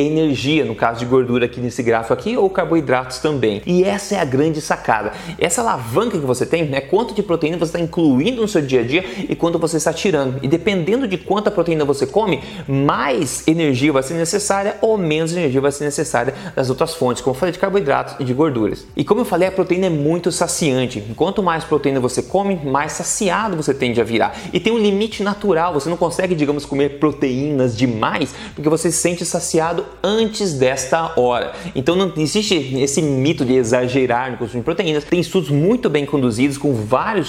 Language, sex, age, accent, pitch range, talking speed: Portuguese, male, 20-39, Brazilian, 130-175 Hz, 205 wpm